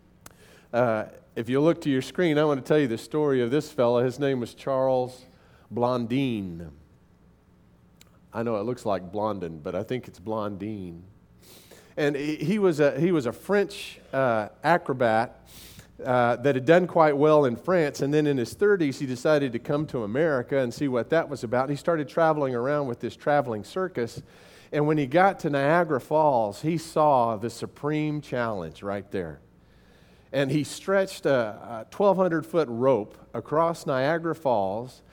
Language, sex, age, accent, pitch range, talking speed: English, male, 40-59, American, 115-160 Hz, 175 wpm